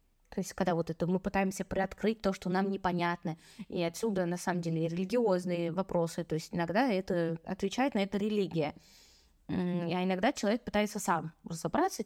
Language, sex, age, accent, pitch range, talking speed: Russian, female, 20-39, native, 170-215 Hz, 165 wpm